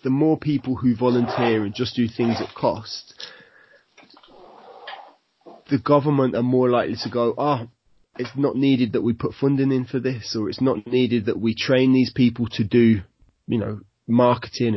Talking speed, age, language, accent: 175 wpm, 20-39, English, British